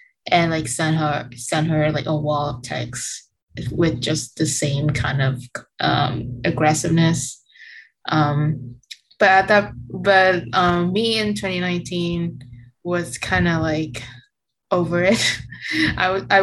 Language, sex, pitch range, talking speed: Vietnamese, female, 150-180 Hz, 130 wpm